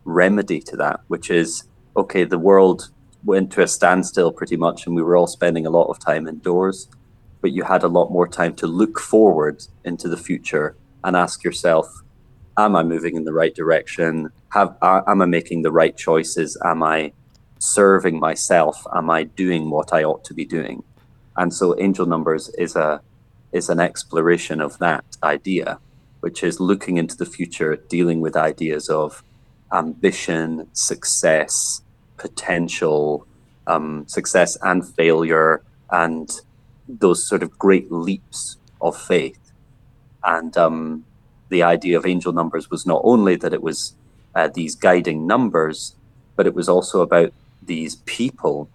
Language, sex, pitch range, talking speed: English, male, 80-95 Hz, 160 wpm